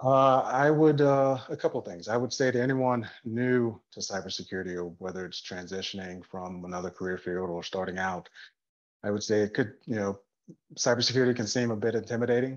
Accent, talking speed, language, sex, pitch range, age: American, 180 wpm, English, male, 95-105 Hz, 30-49